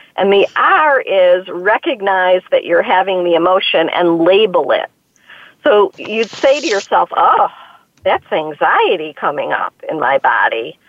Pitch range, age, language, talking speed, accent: 190-290 Hz, 50-69, English, 145 wpm, American